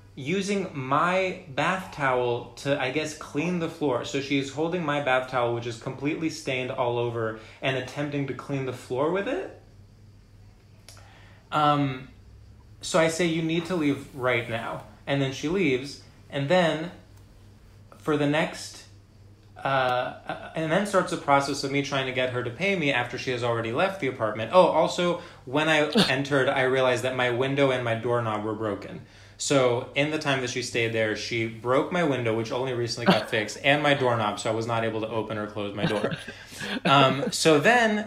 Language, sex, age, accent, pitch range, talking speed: English, male, 20-39, American, 110-150 Hz, 190 wpm